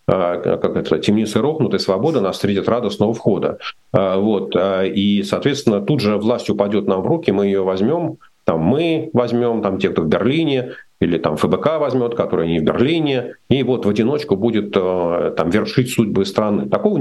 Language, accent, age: Russian, native, 40-59